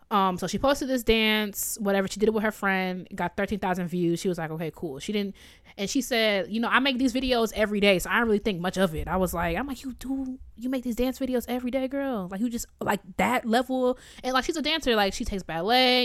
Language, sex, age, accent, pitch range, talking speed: English, female, 20-39, American, 165-225 Hz, 270 wpm